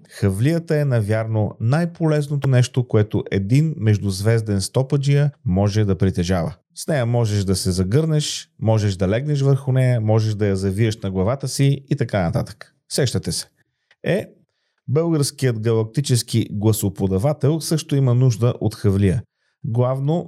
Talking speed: 135 wpm